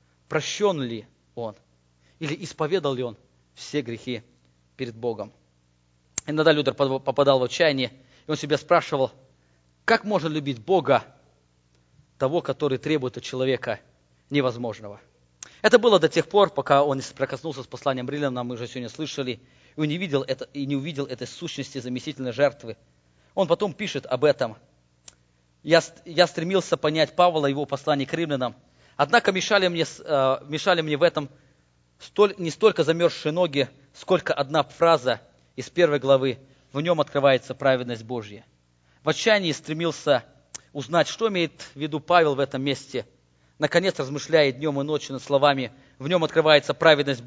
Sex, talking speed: male, 145 wpm